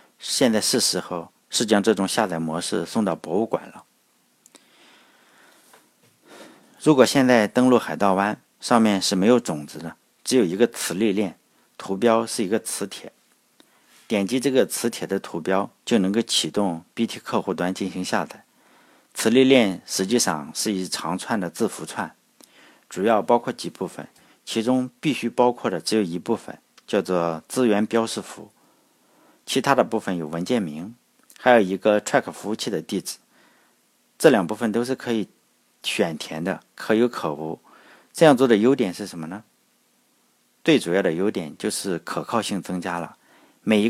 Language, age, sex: Chinese, 50-69, male